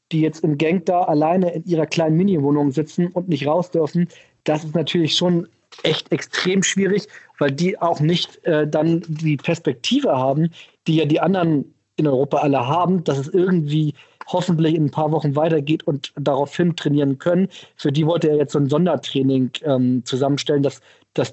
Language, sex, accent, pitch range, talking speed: German, male, German, 145-175 Hz, 180 wpm